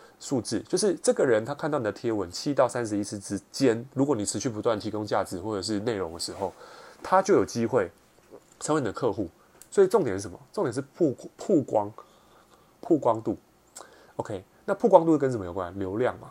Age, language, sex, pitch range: 20-39, Chinese, male, 100-150 Hz